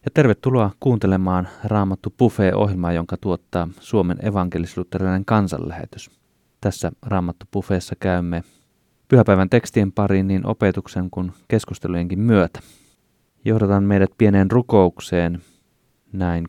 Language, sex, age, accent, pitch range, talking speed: Finnish, male, 30-49, native, 90-105 Hz, 100 wpm